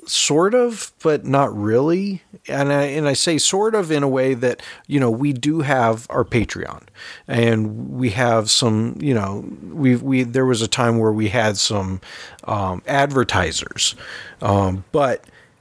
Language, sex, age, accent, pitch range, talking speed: English, male, 40-59, American, 110-140 Hz, 165 wpm